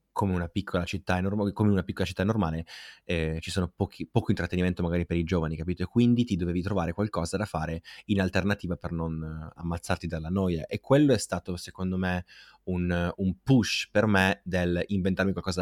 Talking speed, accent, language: 180 wpm, native, Italian